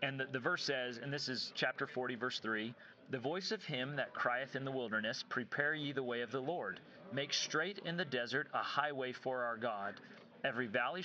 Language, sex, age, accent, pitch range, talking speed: English, male, 40-59, American, 130-155 Hz, 215 wpm